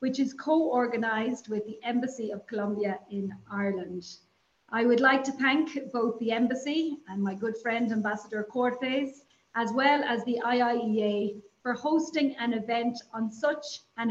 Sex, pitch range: female, 210-255 Hz